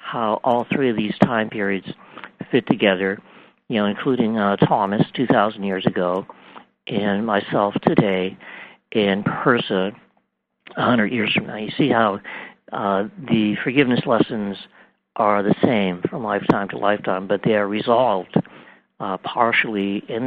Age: 60-79